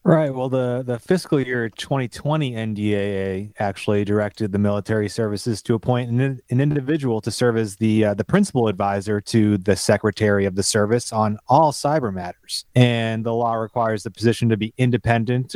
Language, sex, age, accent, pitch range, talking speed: English, male, 30-49, American, 105-135 Hz, 175 wpm